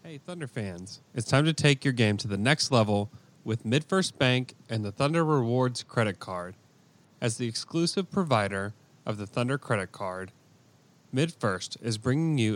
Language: English